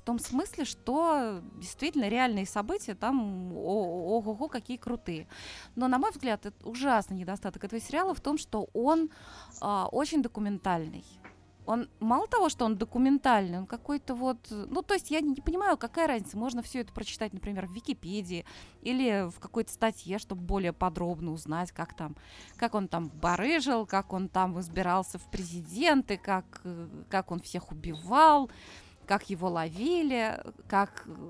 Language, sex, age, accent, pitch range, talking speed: Russian, female, 20-39, native, 190-265 Hz, 155 wpm